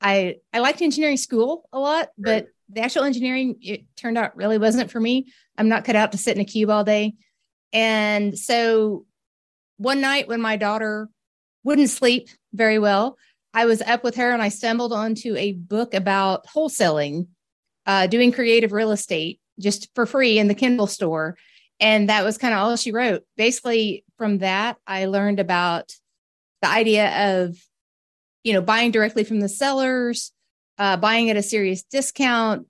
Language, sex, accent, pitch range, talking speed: English, female, American, 200-240 Hz, 175 wpm